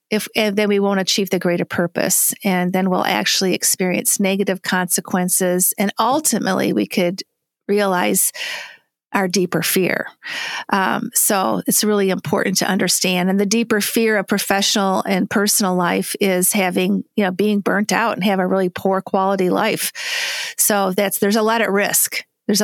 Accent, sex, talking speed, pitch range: American, female, 165 wpm, 190-230 Hz